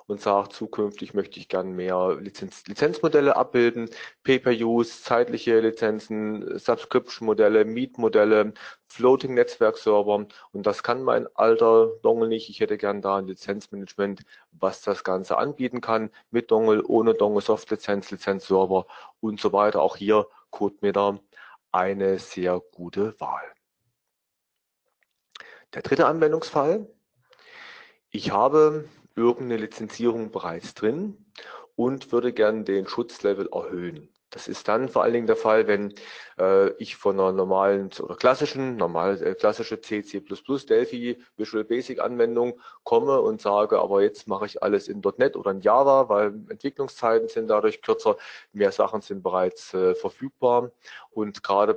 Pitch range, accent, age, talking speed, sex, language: 100-130 Hz, German, 40-59, 135 wpm, male, German